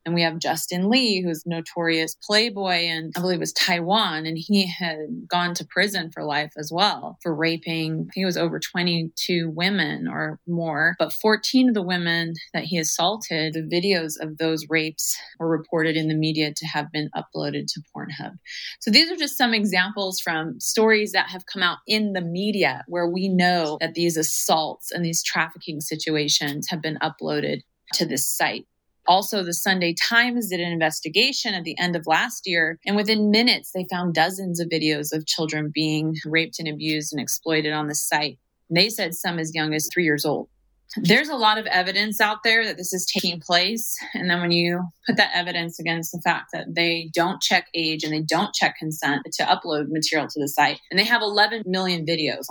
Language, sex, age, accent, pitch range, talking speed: English, female, 30-49, American, 160-190 Hz, 200 wpm